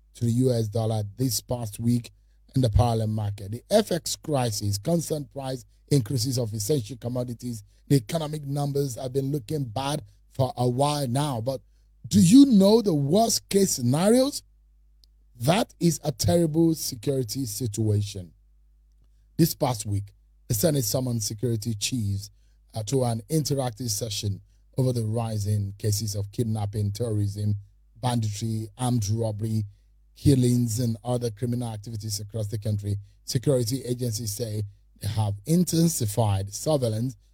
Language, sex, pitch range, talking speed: English, male, 105-140 Hz, 130 wpm